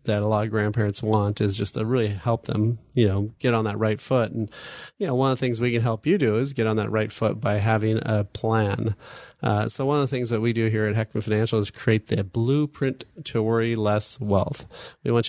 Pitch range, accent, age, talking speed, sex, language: 110-130 Hz, American, 30-49, 250 wpm, male, English